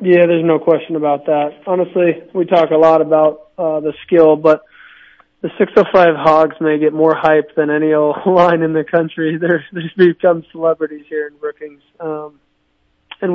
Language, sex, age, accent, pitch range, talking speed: English, male, 20-39, American, 145-160 Hz, 175 wpm